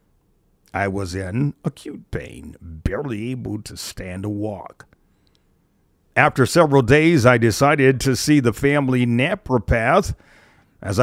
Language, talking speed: English, 120 wpm